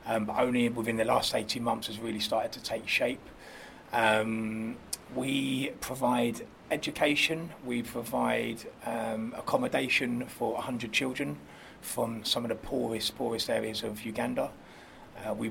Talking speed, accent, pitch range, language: 140 wpm, British, 110-125 Hz, English